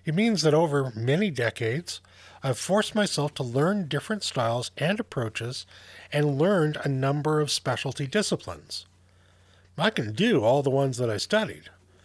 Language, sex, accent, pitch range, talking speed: English, male, American, 105-175 Hz, 155 wpm